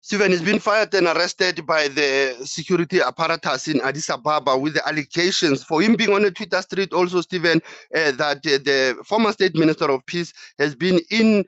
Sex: male